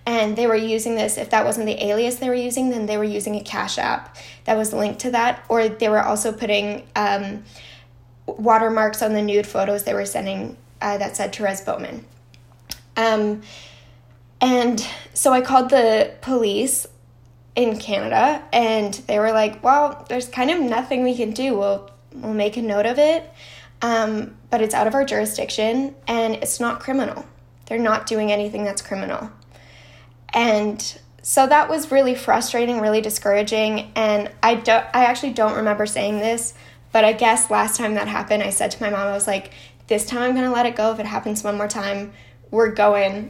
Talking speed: 190 wpm